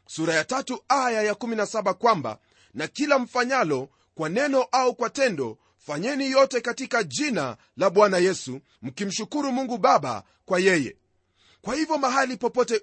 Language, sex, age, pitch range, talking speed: Swahili, male, 40-59, 195-255 Hz, 145 wpm